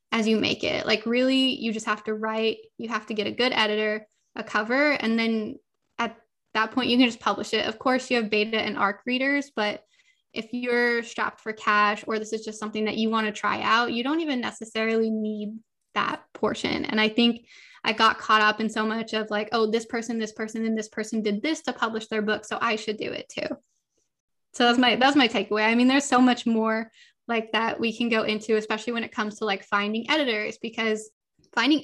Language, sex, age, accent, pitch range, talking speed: English, female, 10-29, American, 215-245 Hz, 230 wpm